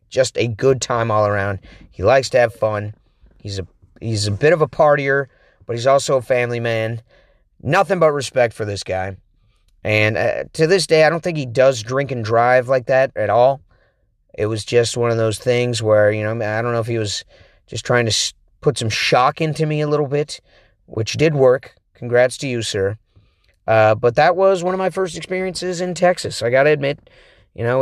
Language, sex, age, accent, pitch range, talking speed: English, male, 30-49, American, 110-140 Hz, 220 wpm